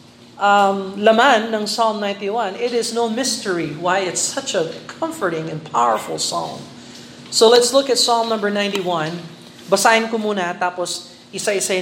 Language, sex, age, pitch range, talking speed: Filipino, male, 40-59, 170-210 Hz, 145 wpm